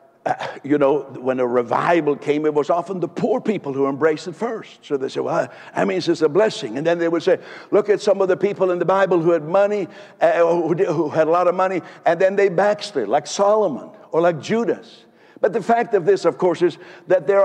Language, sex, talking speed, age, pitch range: English, male, 240 wpm, 60-79, 170-205 Hz